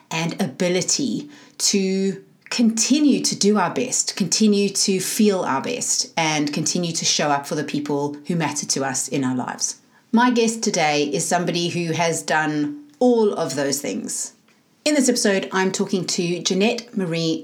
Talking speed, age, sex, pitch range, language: 165 wpm, 30-49, female, 150-205 Hz, English